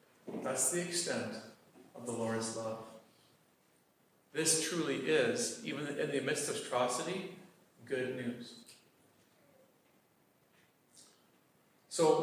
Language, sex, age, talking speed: English, male, 40-59, 95 wpm